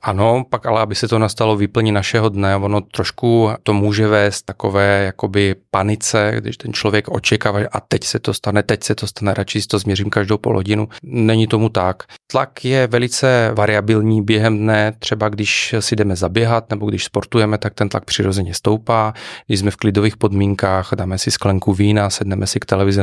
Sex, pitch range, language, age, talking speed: male, 95-110 Hz, Czech, 30-49, 190 wpm